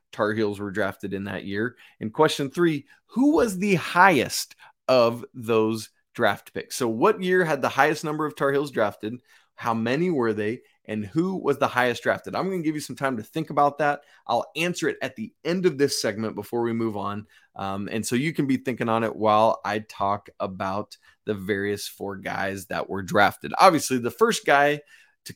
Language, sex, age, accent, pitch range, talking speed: English, male, 20-39, American, 110-155 Hz, 210 wpm